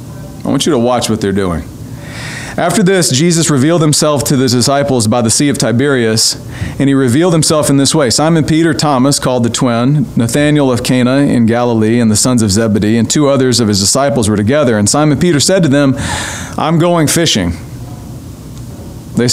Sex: male